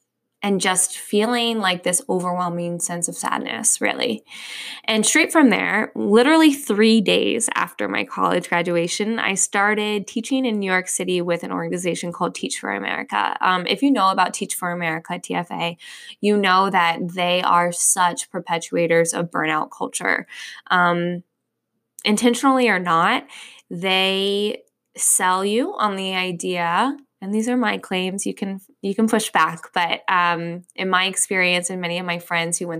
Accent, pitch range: American, 175-225 Hz